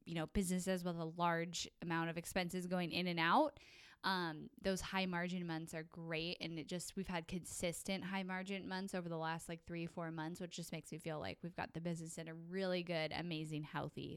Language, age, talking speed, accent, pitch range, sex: English, 10-29, 220 wpm, American, 165-195 Hz, female